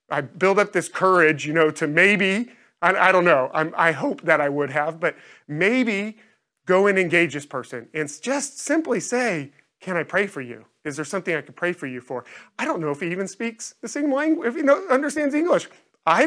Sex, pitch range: male, 150-195 Hz